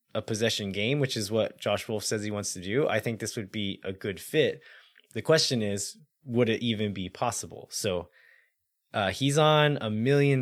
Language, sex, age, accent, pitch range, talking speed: English, male, 20-39, American, 95-120 Hz, 200 wpm